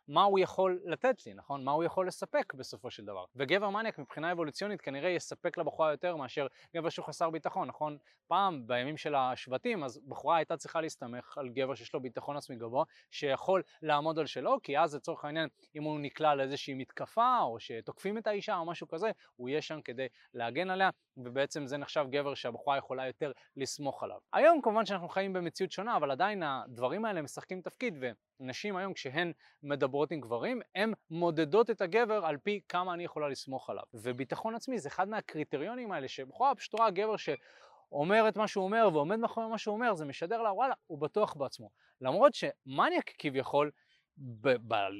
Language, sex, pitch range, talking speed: Hebrew, male, 140-200 Hz, 170 wpm